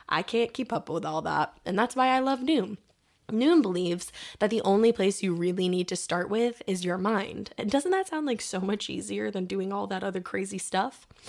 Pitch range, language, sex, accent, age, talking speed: 175-235 Hz, English, female, American, 20-39, 230 wpm